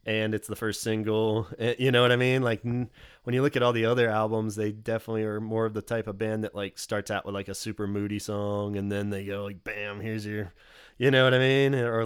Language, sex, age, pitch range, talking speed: English, male, 20-39, 110-125 Hz, 260 wpm